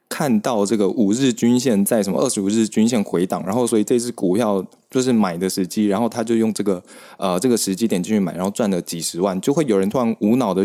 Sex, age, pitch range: male, 20-39, 95-120 Hz